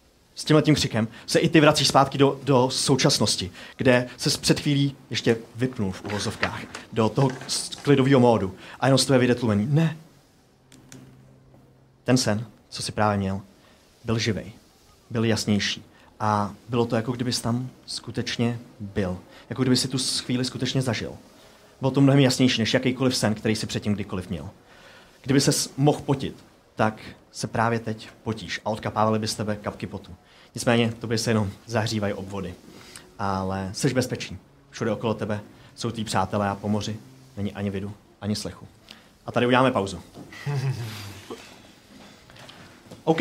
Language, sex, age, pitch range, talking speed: Czech, male, 30-49, 105-145 Hz, 150 wpm